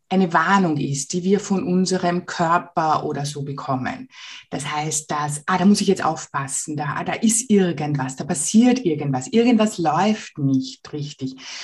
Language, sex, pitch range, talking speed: German, female, 150-215 Hz, 160 wpm